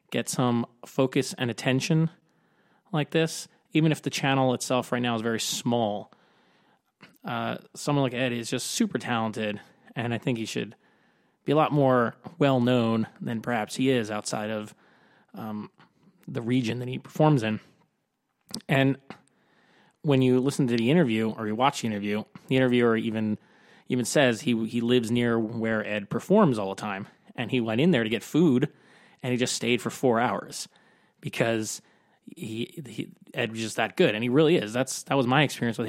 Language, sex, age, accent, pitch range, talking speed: English, male, 20-39, American, 115-135 Hz, 180 wpm